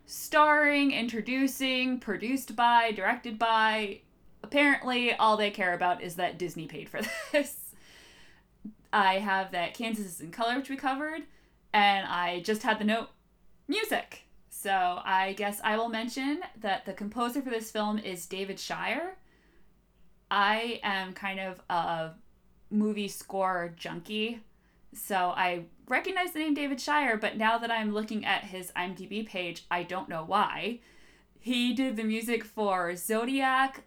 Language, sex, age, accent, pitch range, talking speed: English, female, 20-39, American, 190-240 Hz, 145 wpm